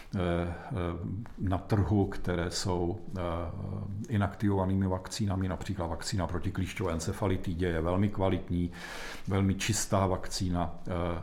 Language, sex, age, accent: Czech, male, 50-69, native